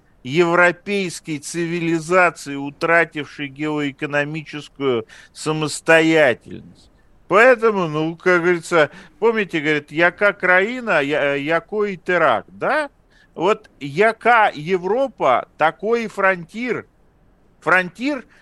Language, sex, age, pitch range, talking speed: Russian, male, 50-69, 150-195 Hz, 75 wpm